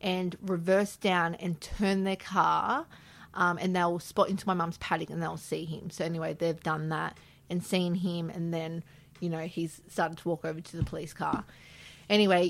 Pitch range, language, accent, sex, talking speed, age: 165-190 Hz, English, Australian, female, 195 wpm, 30-49